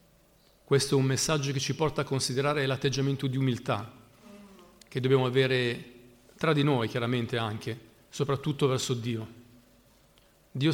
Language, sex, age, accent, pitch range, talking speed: Italian, male, 40-59, native, 120-145 Hz, 135 wpm